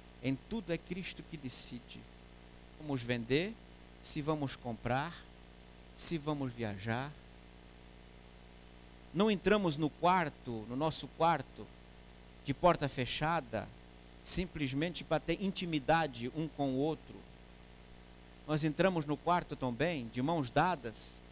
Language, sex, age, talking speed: English, male, 50-69, 115 wpm